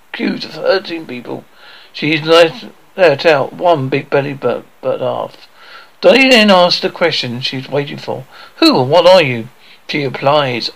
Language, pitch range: English, 135-185 Hz